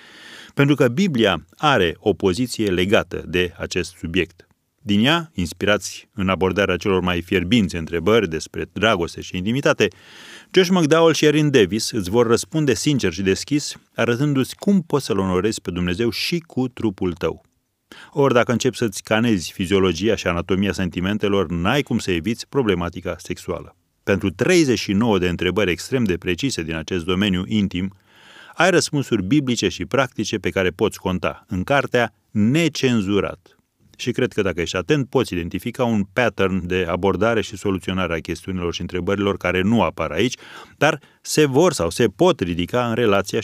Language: Romanian